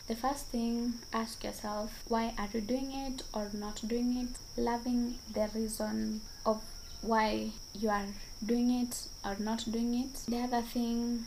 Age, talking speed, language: 20-39, 160 wpm, English